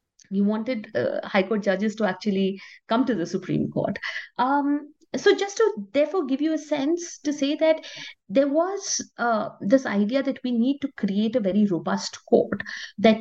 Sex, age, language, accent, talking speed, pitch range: female, 50-69, English, Indian, 180 wpm, 200-285 Hz